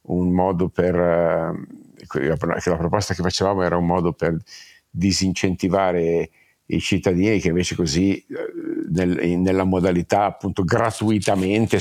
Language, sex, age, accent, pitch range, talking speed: Italian, male, 50-69, native, 90-105 Hz, 105 wpm